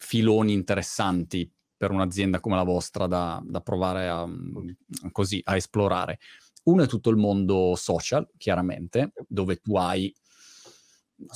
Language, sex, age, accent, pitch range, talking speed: Italian, male, 30-49, native, 95-130 Hz, 130 wpm